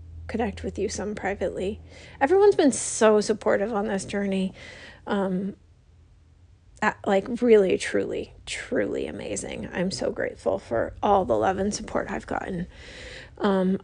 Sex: female